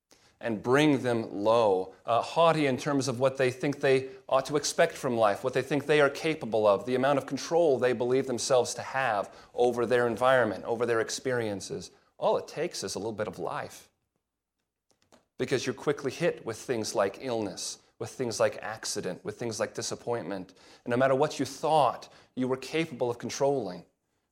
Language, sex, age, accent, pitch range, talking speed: English, male, 30-49, American, 120-145 Hz, 190 wpm